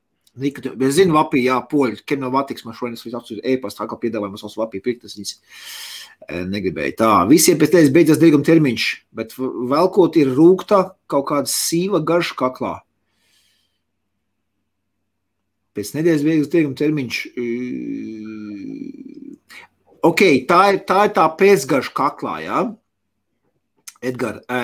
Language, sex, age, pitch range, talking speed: English, male, 30-49, 120-185 Hz, 135 wpm